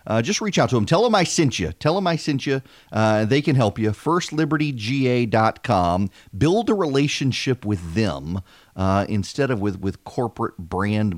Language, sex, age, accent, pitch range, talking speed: English, male, 40-59, American, 100-130 Hz, 185 wpm